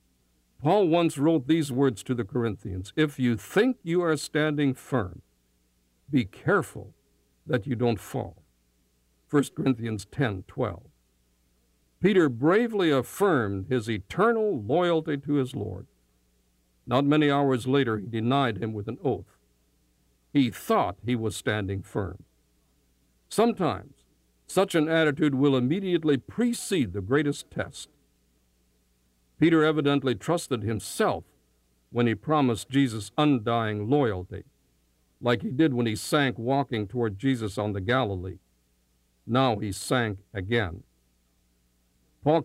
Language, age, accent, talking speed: English, 60-79, American, 125 wpm